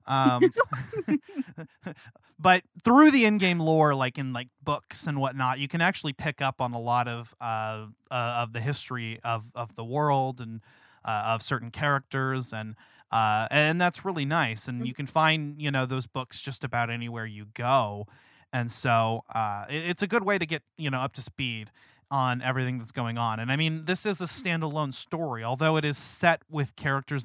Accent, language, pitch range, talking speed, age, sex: American, English, 120-160 Hz, 190 wpm, 30-49, male